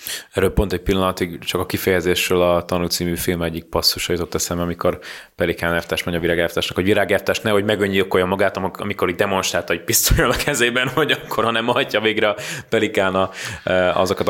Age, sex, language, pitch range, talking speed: 20-39, male, Hungarian, 85-100 Hz, 175 wpm